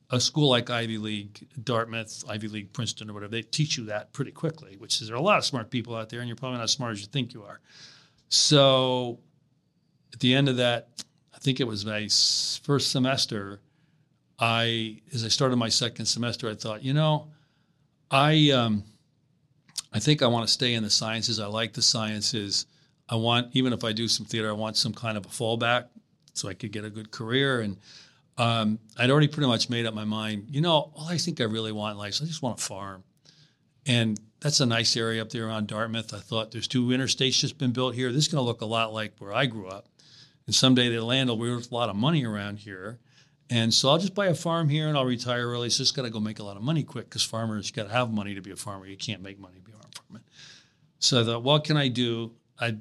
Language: English